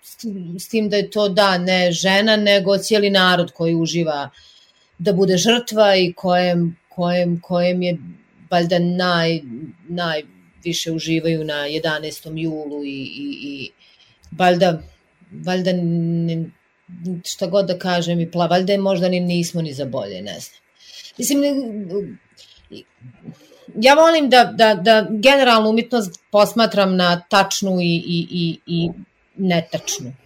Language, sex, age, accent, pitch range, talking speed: English, female, 30-49, Croatian, 165-205 Hz, 120 wpm